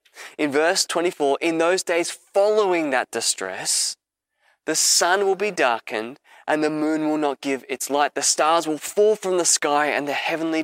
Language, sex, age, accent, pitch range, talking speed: English, male, 20-39, Australian, 145-185 Hz, 180 wpm